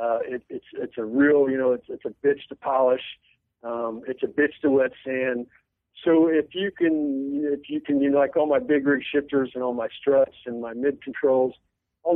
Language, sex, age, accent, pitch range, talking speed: English, male, 50-69, American, 125-155 Hz, 220 wpm